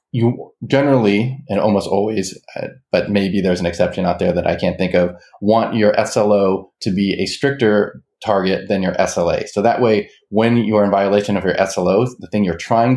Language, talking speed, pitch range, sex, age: English, 200 wpm, 95-120 Hz, male, 30-49